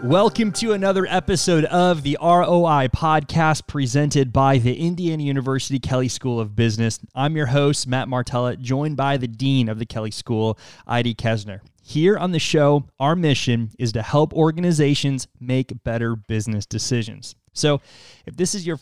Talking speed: 165 wpm